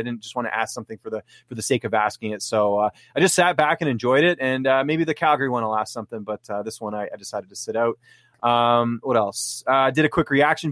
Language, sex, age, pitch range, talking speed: English, male, 20-39, 120-150 Hz, 290 wpm